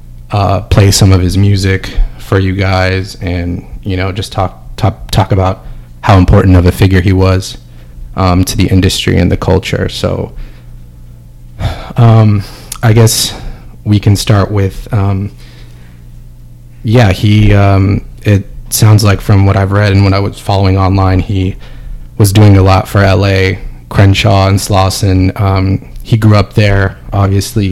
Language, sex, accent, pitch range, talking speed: English, male, American, 95-105 Hz, 155 wpm